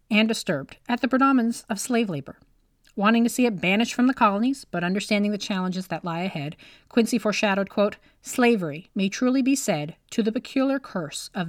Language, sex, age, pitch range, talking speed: English, female, 30-49, 170-240 Hz, 190 wpm